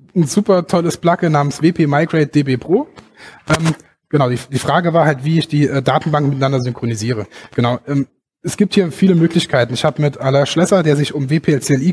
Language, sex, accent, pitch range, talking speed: German, male, German, 130-165 Hz, 190 wpm